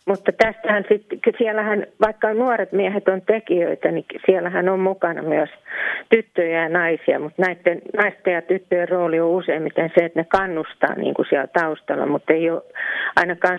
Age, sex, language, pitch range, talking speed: 40-59, female, Finnish, 170-205 Hz, 155 wpm